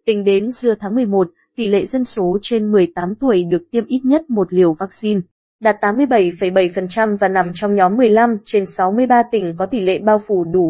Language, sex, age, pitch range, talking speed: Vietnamese, female, 20-39, 190-235 Hz, 195 wpm